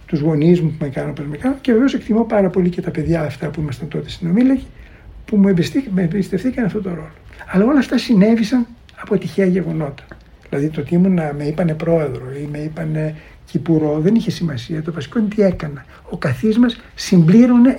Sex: male